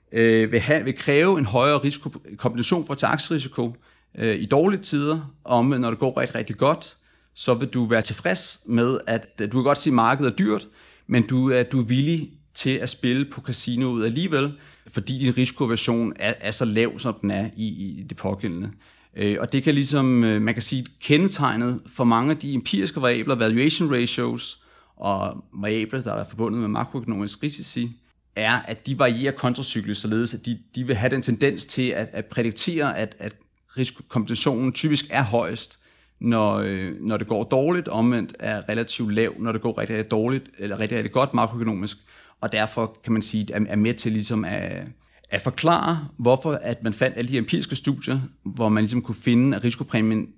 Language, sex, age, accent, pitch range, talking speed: Danish, male, 30-49, native, 110-135 Hz, 190 wpm